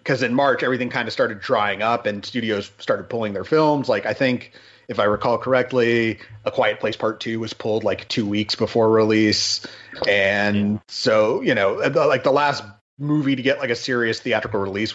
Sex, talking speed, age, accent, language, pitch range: male, 195 wpm, 30-49, American, English, 110-135 Hz